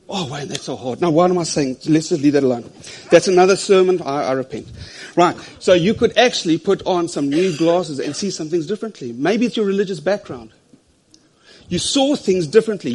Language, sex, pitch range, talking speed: English, male, 130-180 Hz, 210 wpm